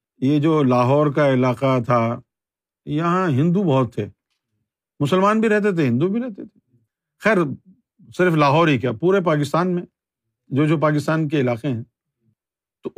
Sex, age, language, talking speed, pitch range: male, 50-69, Urdu, 155 wpm, 125-180 Hz